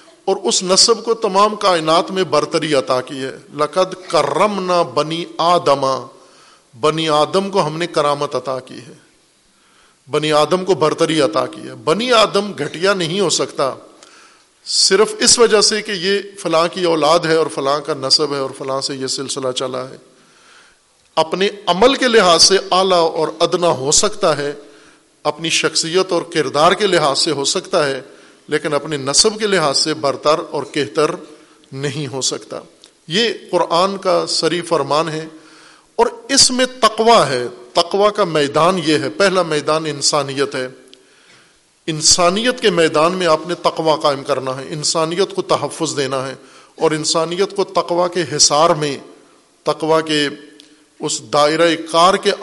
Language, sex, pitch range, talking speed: Urdu, male, 150-185 Hz, 160 wpm